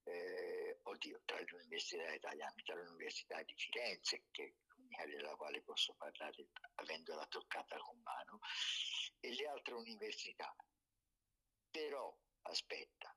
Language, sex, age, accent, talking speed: Italian, male, 50-69, native, 125 wpm